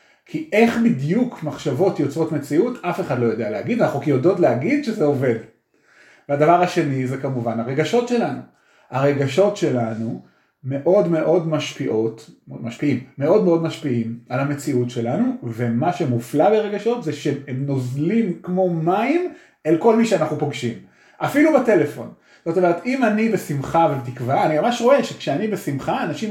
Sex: male